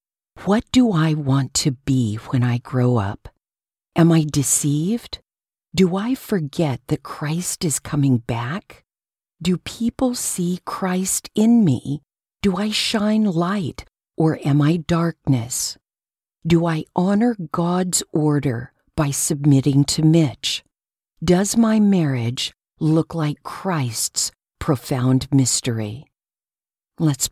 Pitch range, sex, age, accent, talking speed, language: 135-180 Hz, female, 50-69, American, 115 wpm, English